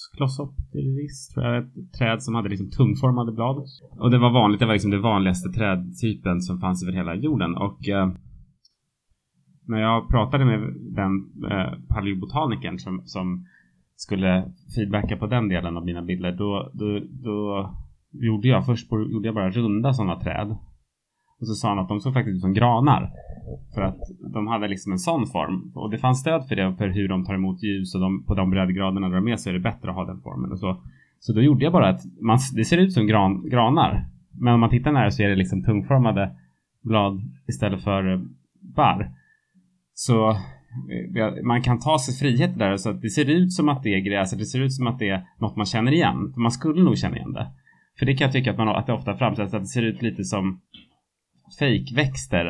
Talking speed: 215 wpm